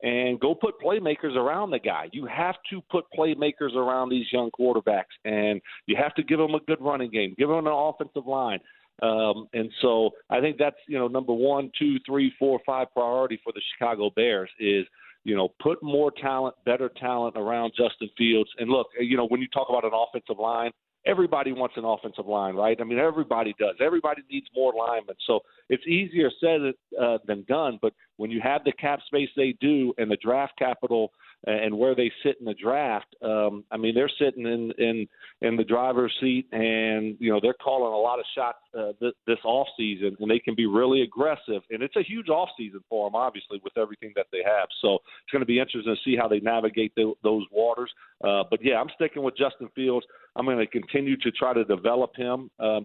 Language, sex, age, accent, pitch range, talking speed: English, male, 50-69, American, 110-140 Hz, 215 wpm